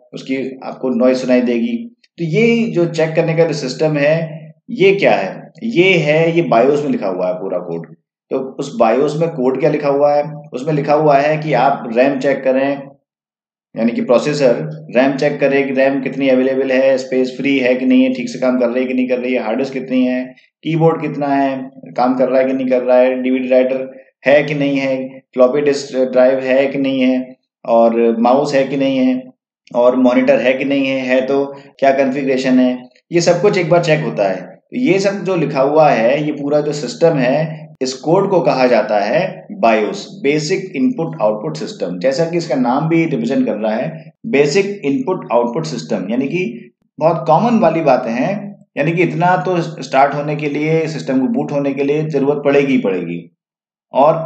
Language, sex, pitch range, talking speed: Hindi, male, 130-165 Hz, 205 wpm